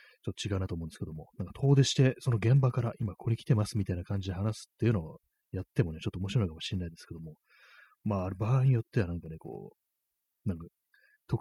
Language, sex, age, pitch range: Japanese, male, 30-49, 90-125 Hz